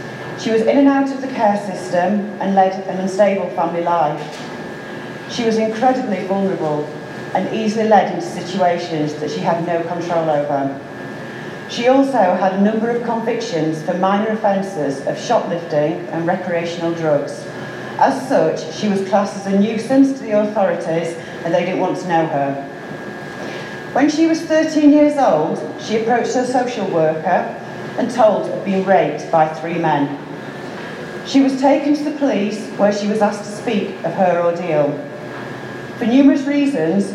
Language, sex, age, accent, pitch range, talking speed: English, female, 40-59, British, 165-220 Hz, 160 wpm